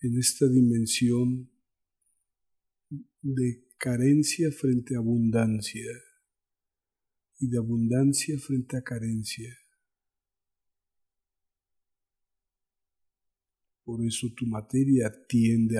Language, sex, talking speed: Spanish, male, 70 wpm